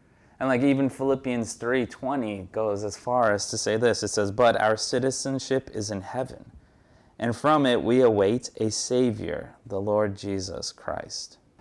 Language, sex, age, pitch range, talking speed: English, male, 30-49, 105-125 Hz, 165 wpm